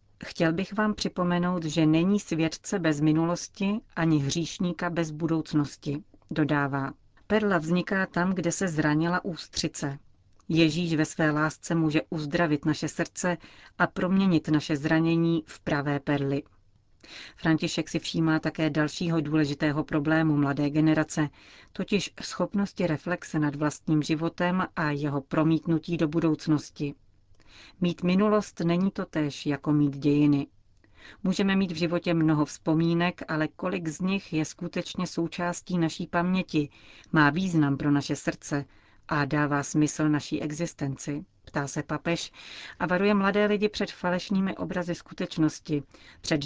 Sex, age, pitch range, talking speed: female, 40-59, 150-180 Hz, 130 wpm